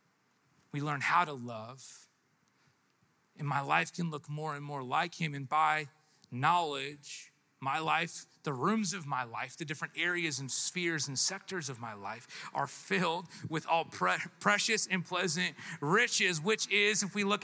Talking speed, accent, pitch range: 165 wpm, American, 175-225 Hz